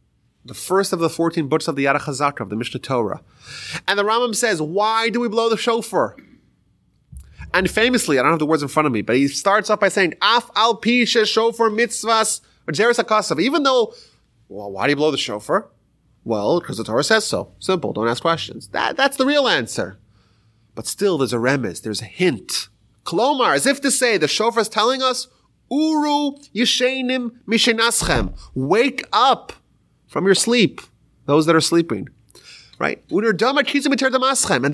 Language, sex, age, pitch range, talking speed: English, male, 30-49, 140-235 Hz, 175 wpm